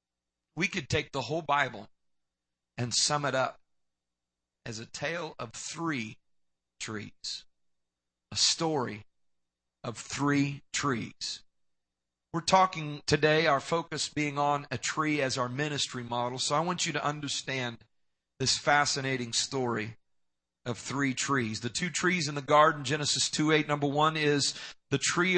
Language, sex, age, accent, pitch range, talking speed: English, male, 40-59, American, 120-155 Hz, 140 wpm